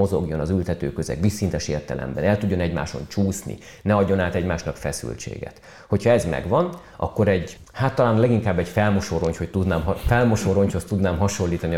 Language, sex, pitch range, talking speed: Hungarian, male, 85-110 Hz, 150 wpm